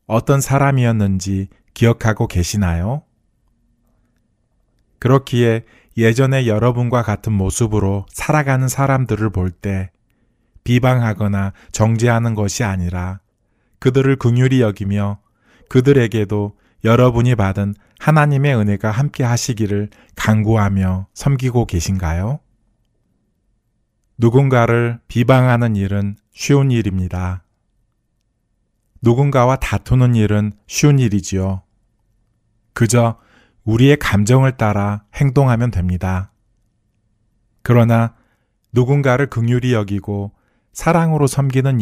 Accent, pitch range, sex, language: native, 100-120 Hz, male, Korean